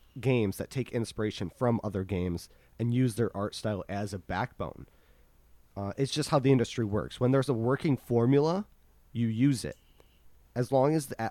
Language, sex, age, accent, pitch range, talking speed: English, male, 30-49, American, 95-125 Hz, 185 wpm